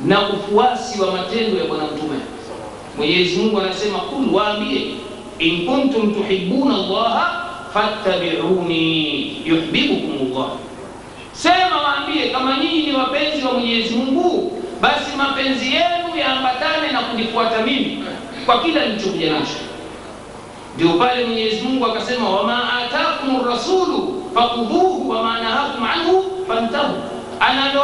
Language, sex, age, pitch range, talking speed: Swahili, male, 50-69, 195-275 Hz, 110 wpm